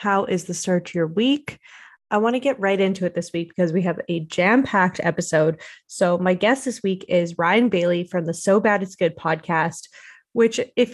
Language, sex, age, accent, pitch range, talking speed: English, female, 20-39, American, 180-235 Hz, 220 wpm